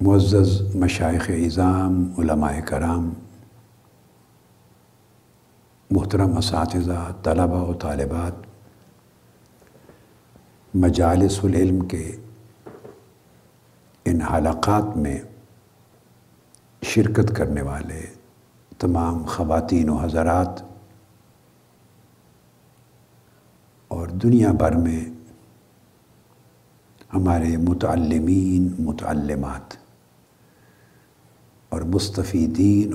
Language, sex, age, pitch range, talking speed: Urdu, male, 60-79, 80-110 Hz, 60 wpm